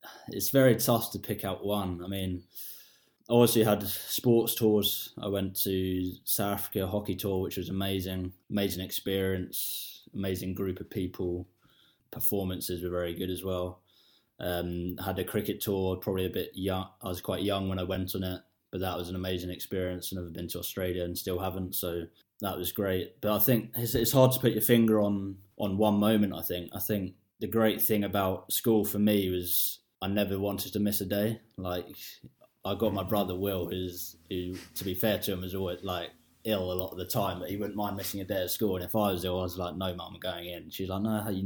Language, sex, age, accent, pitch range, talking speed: English, male, 20-39, British, 90-105 Hz, 220 wpm